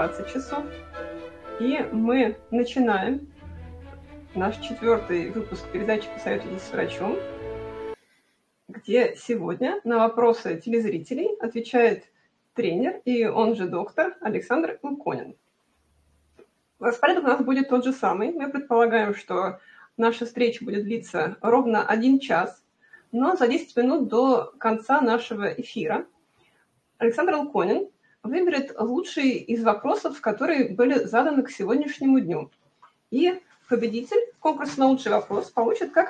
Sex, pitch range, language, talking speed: female, 220-280 Hz, Russian, 120 wpm